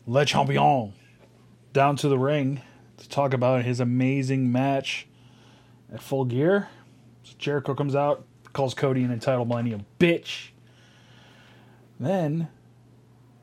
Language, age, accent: English, 30-49, American